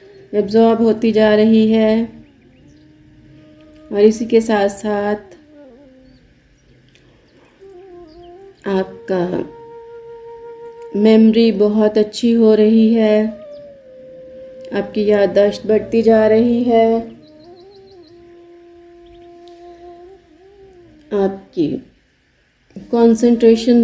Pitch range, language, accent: 210-310 Hz, Hindi, native